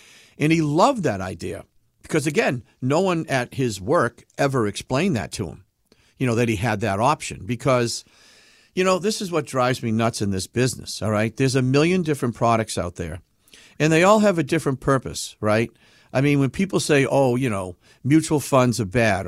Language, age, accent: English, 50-69, American